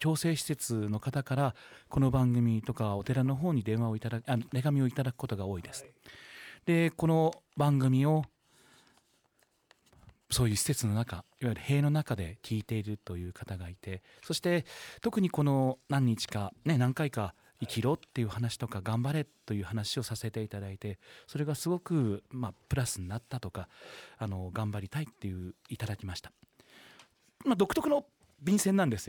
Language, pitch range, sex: Japanese, 105-155 Hz, male